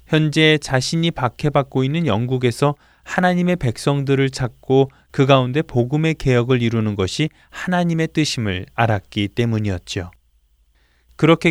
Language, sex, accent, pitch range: Korean, male, native, 110-165 Hz